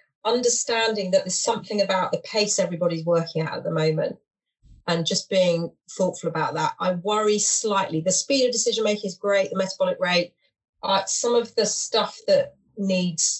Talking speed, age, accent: 170 wpm, 30-49, British